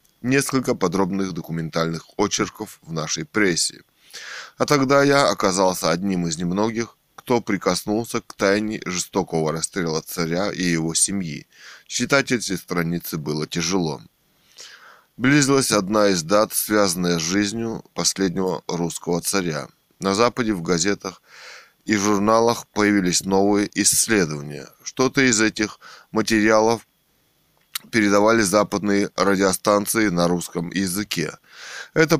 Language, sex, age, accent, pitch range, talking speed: Russian, male, 20-39, native, 90-115 Hz, 110 wpm